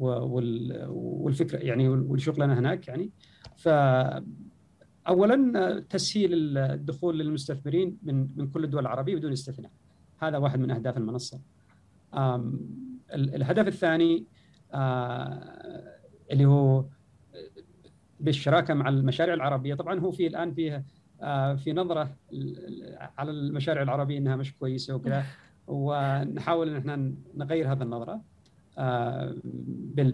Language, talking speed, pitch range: English, 100 wpm, 125-155 Hz